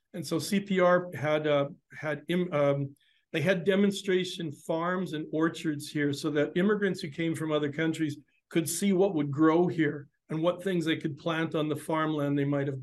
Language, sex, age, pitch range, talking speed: English, male, 50-69, 145-165 Hz, 185 wpm